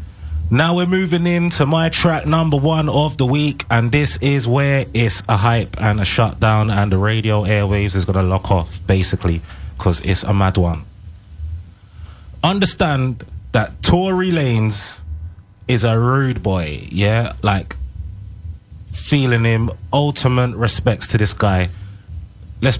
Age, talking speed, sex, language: 20-39, 140 wpm, male, English